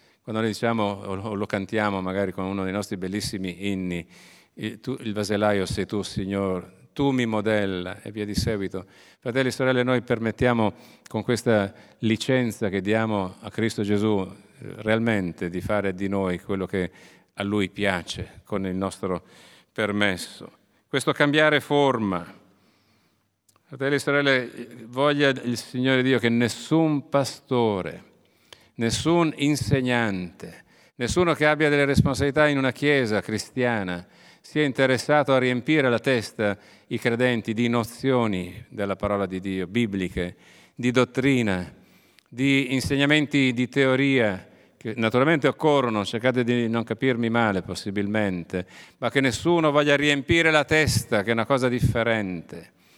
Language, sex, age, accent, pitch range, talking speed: Italian, male, 50-69, native, 100-130 Hz, 135 wpm